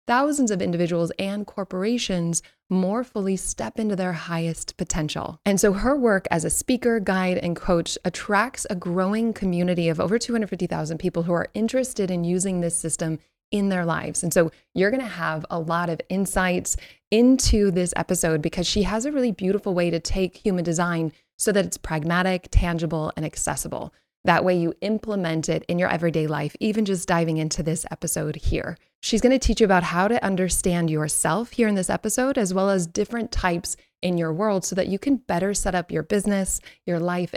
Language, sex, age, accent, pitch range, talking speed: English, female, 20-39, American, 170-205 Hz, 190 wpm